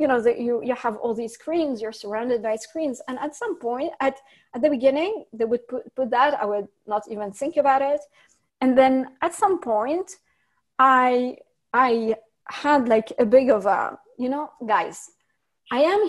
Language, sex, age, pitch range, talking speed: English, female, 30-49, 235-290 Hz, 190 wpm